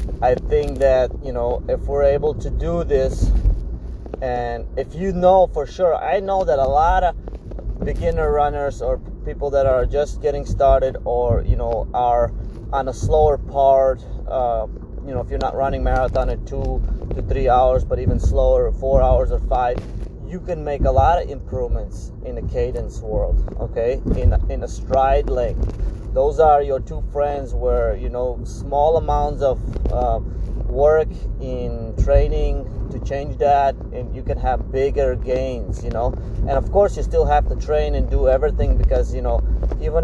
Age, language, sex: 30-49, English, male